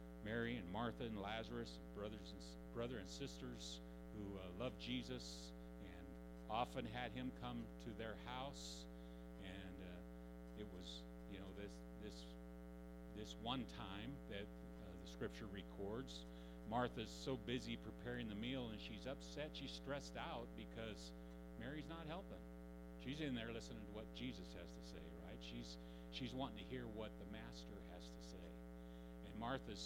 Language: English